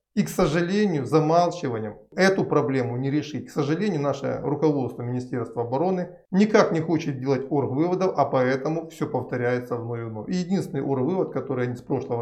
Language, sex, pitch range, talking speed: Russian, male, 125-170 Hz, 155 wpm